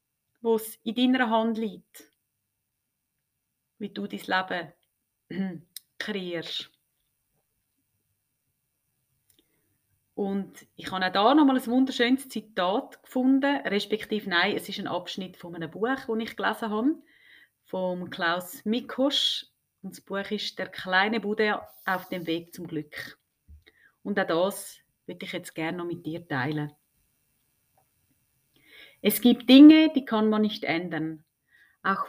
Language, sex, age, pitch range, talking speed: German, female, 30-49, 175-240 Hz, 130 wpm